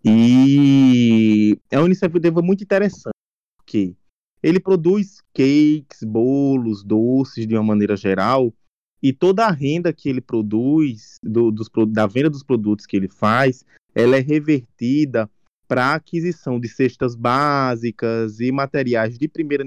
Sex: male